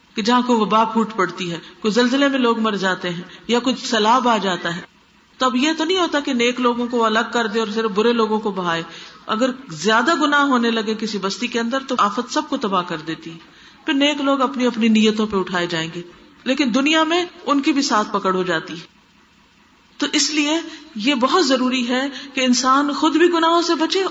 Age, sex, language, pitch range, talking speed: 50-69, female, Urdu, 195-260 Hz, 225 wpm